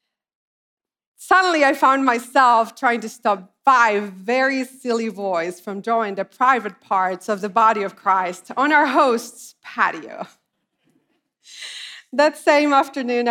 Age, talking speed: 30-49, 125 wpm